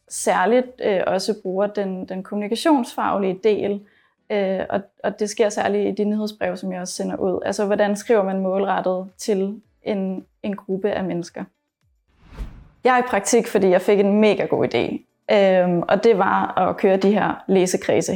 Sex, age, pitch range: female, 20-39, 185-215 Hz